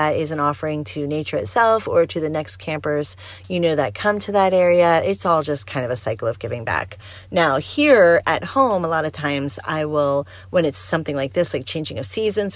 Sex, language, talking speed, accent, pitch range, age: female, English, 230 wpm, American, 130-170 Hz, 30-49